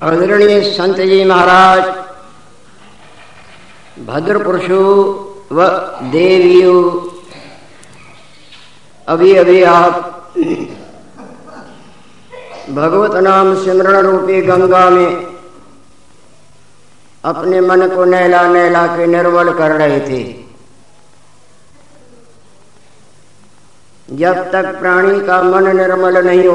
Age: 50-69